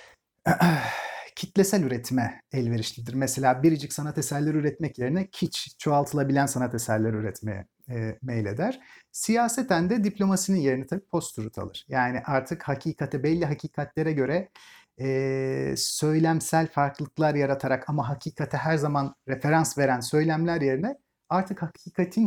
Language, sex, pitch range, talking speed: Turkish, male, 130-175 Hz, 115 wpm